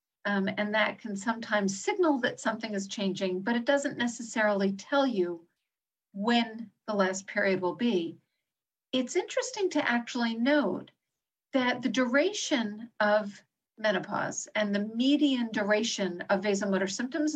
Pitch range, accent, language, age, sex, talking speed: 205-260 Hz, American, English, 50-69, female, 135 wpm